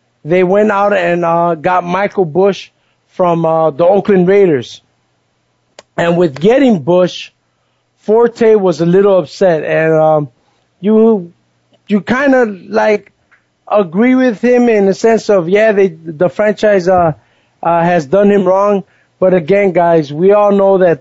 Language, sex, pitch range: English, male, 165-205 Hz